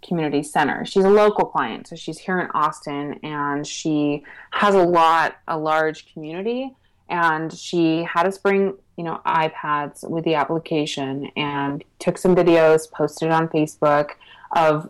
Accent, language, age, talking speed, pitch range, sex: American, English, 20-39, 155 wpm, 150-175 Hz, female